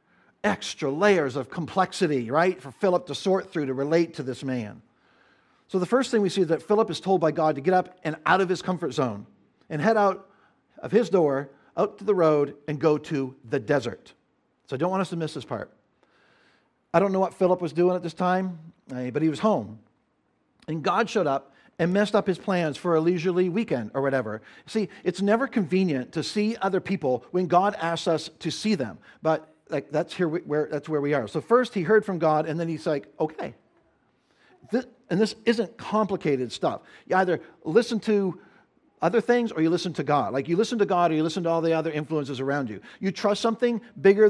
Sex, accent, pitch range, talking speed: male, American, 145-190 Hz, 220 wpm